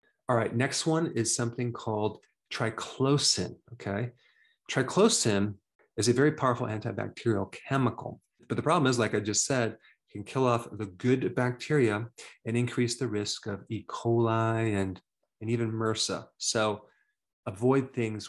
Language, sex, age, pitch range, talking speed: English, male, 30-49, 110-130 Hz, 150 wpm